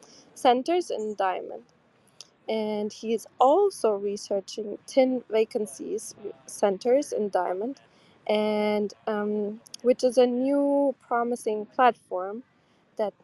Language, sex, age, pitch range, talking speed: English, female, 20-39, 210-250 Hz, 100 wpm